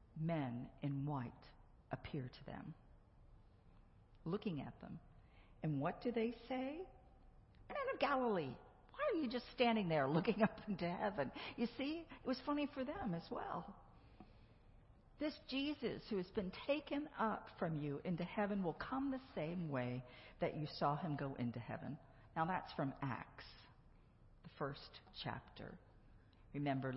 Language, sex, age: English, female, 50-69